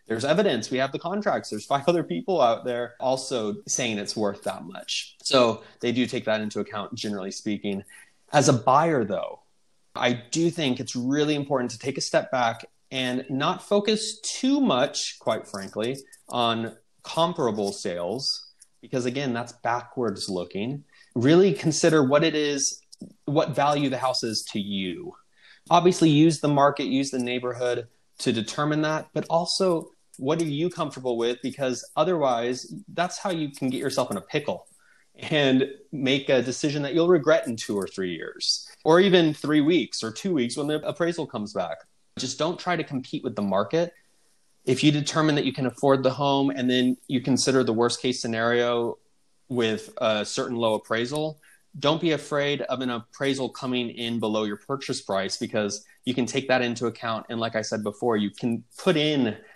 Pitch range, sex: 115-155 Hz, male